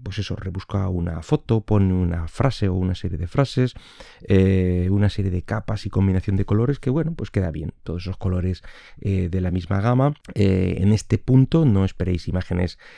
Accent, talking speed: Spanish, 190 wpm